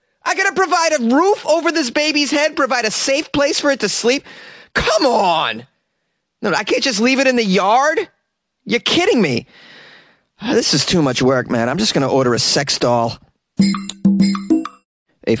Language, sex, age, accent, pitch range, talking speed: English, male, 30-49, American, 125-195 Hz, 185 wpm